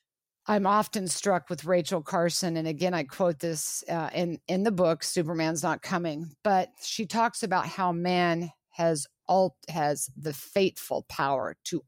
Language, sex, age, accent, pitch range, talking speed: English, female, 50-69, American, 165-200 Hz, 160 wpm